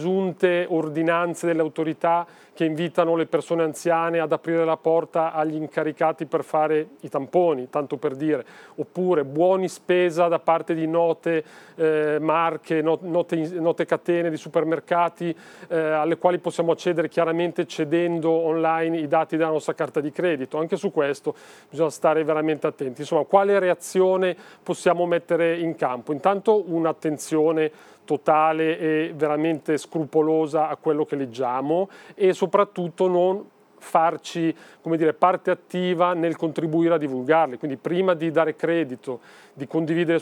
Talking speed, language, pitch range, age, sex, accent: 140 wpm, Italian, 155-170 Hz, 40-59, male, native